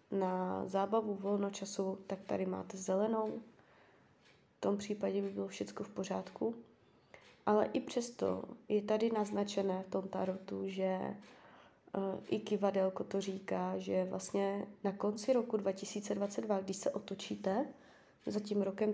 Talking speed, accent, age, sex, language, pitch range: 135 wpm, native, 20-39, female, Czech, 190-215 Hz